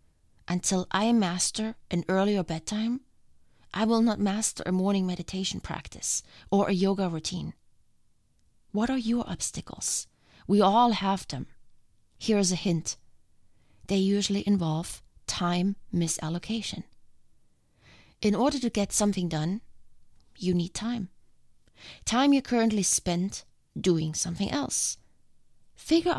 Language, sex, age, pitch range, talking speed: English, female, 20-39, 170-220 Hz, 120 wpm